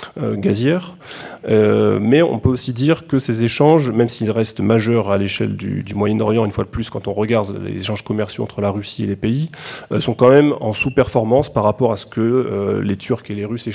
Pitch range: 110-130 Hz